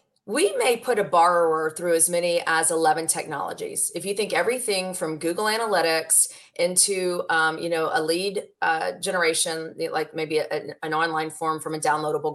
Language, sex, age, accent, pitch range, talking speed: English, female, 30-49, American, 160-215 Hz, 175 wpm